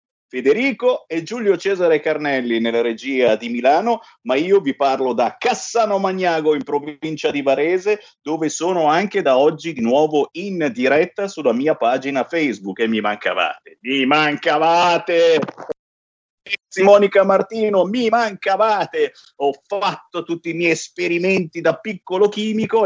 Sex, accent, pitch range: male, native, 150-225 Hz